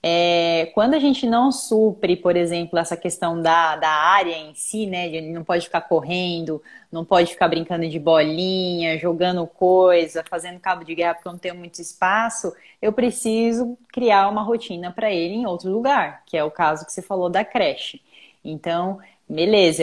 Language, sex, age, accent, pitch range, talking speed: Portuguese, female, 20-39, Brazilian, 170-225 Hz, 180 wpm